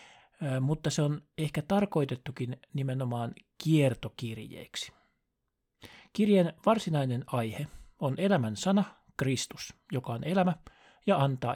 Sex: male